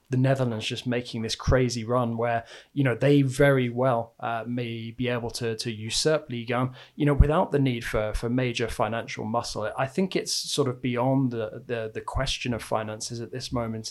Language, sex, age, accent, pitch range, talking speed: English, male, 20-39, British, 115-130 Hz, 200 wpm